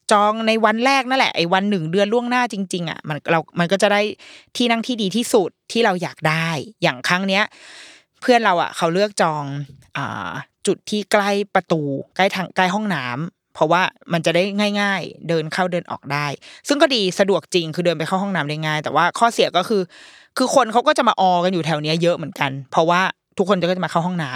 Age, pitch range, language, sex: 20-39, 165-210 Hz, Thai, female